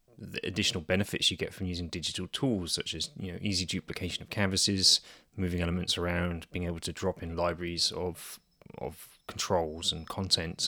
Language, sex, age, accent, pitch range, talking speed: English, male, 20-39, British, 90-105 Hz, 175 wpm